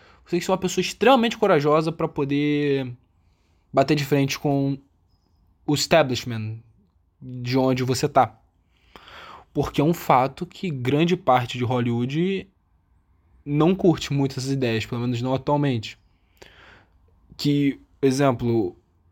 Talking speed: 135 wpm